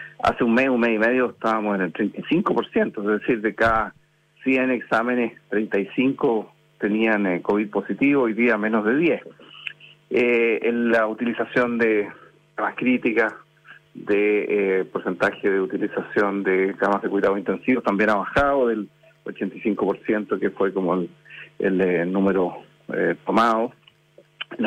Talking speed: 140 wpm